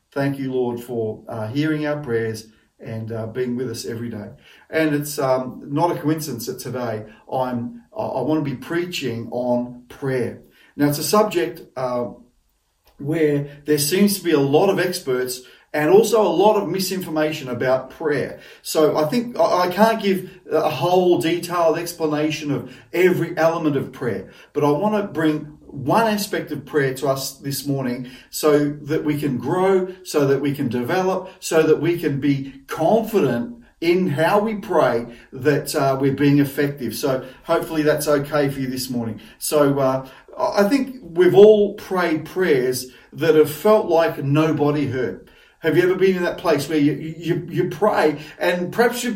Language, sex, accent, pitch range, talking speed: English, male, Australian, 130-180 Hz, 175 wpm